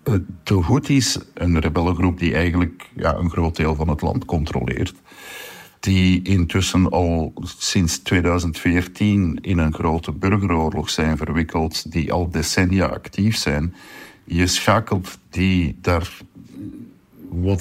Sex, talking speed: male, 115 wpm